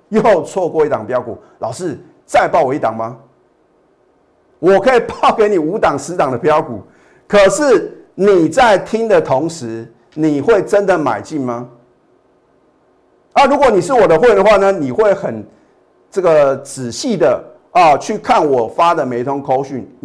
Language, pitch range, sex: Chinese, 125-205 Hz, male